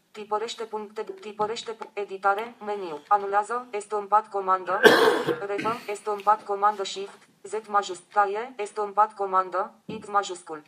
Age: 20-39